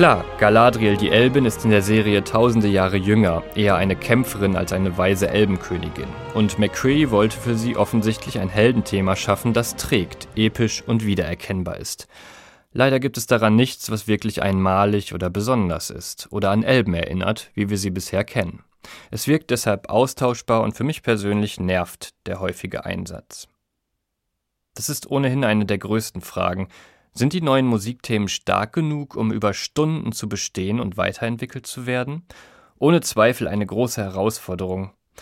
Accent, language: German, German